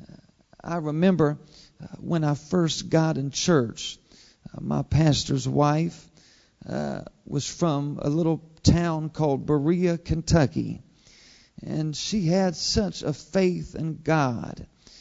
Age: 40-59